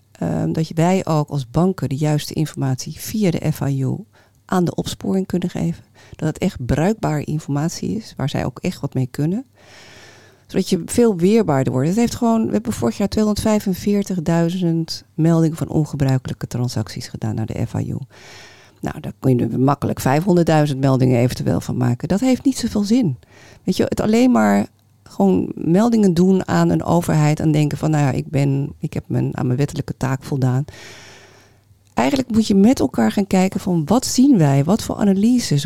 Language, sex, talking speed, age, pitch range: Dutch, female, 180 wpm, 40-59, 130-185 Hz